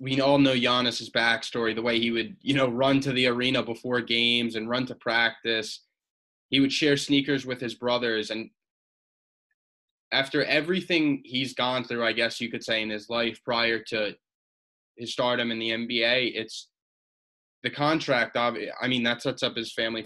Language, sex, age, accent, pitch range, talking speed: English, male, 20-39, American, 115-140 Hz, 175 wpm